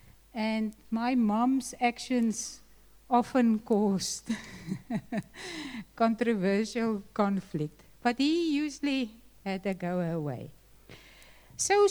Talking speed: 80 wpm